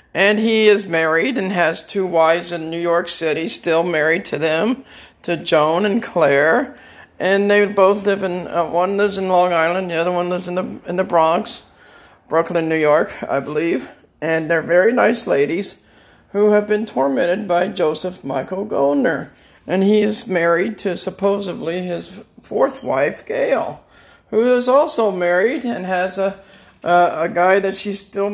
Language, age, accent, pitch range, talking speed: English, 50-69, American, 170-210 Hz, 170 wpm